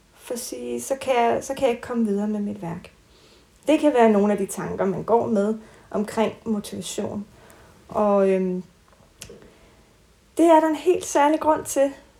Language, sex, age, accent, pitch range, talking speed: Danish, female, 30-49, native, 210-265 Hz, 155 wpm